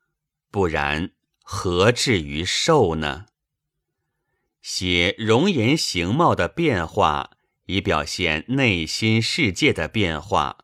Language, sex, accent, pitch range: Chinese, male, native, 90-140 Hz